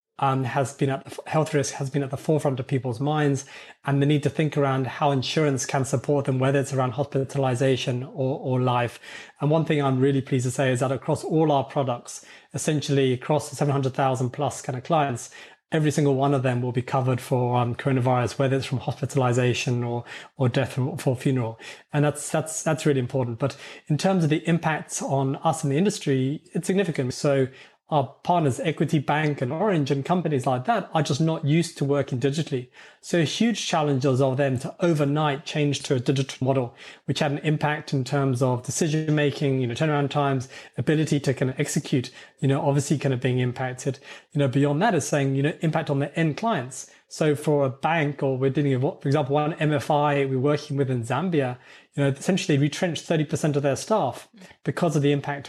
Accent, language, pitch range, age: British, English, 135-155 Hz, 30-49